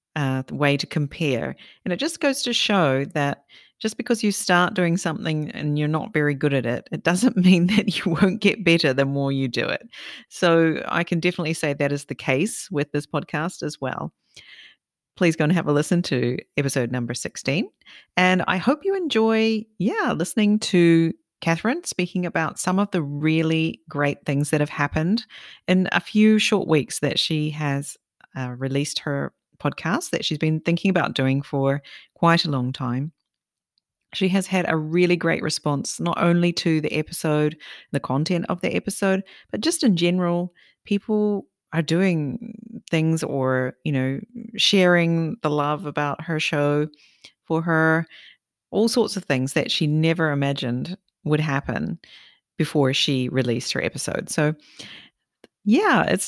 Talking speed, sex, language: 170 wpm, female, English